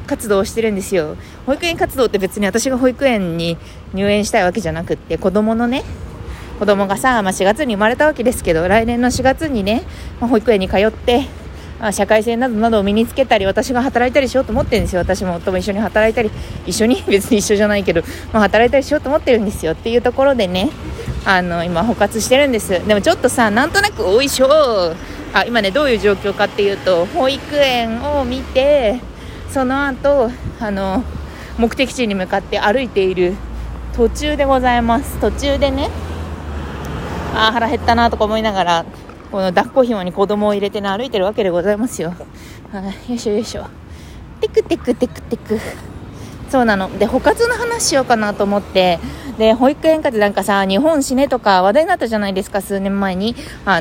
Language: Japanese